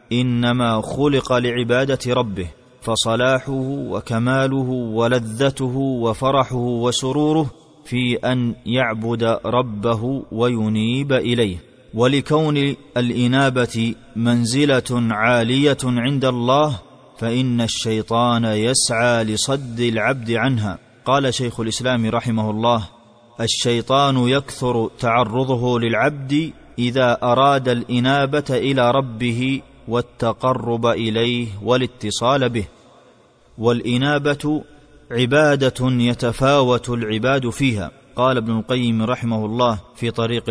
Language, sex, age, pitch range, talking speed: Arabic, male, 30-49, 115-130 Hz, 85 wpm